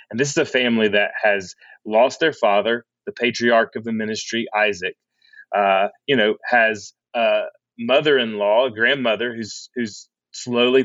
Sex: male